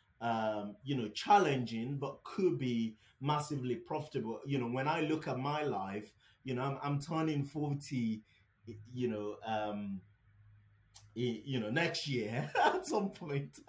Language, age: English, 30-49